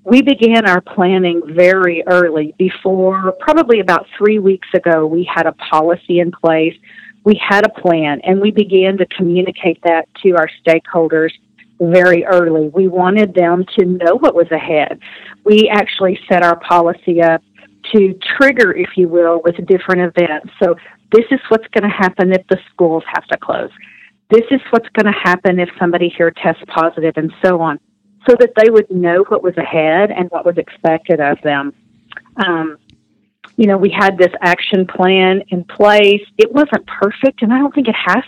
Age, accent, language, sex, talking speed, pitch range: 50-69, American, English, female, 180 wpm, 170-200 Hz